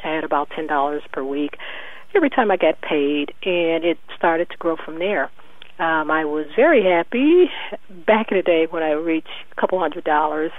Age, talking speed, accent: 40-59, 195 wpm, American